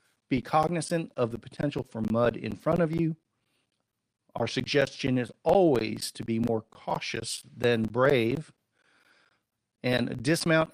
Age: 50-69